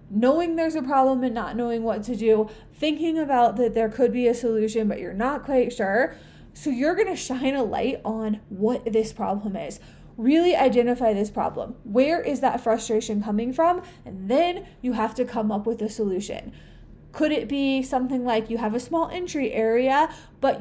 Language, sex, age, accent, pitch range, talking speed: English, female, 20-39, American, 220-265 Hz, 195 wpm